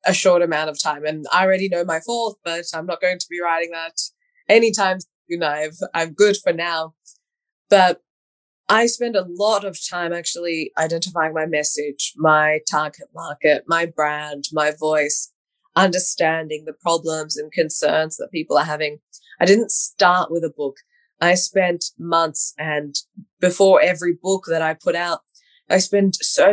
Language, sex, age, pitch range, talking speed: English, female, 20-39, 160-205 Hz, 165 wpm